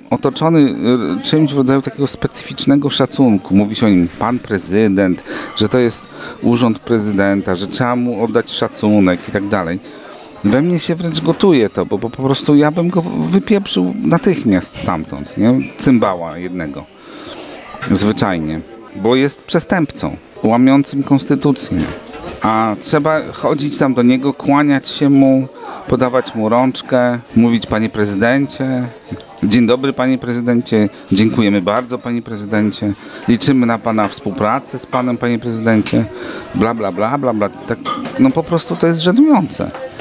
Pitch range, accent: 110-140 Hz, native